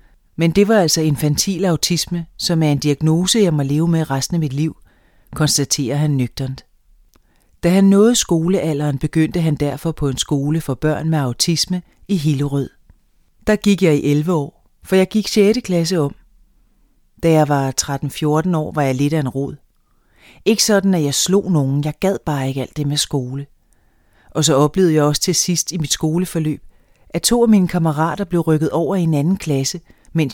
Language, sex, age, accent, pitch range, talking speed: Danish, female, 30-49, native, 145-180 Hz, 190 wpm